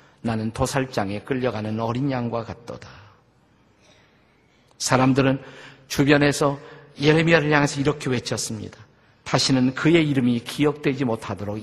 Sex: male